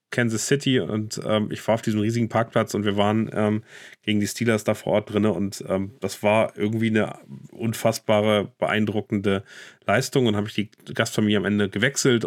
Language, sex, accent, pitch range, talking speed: German, male, German, 100-115 Hz, 185 wpm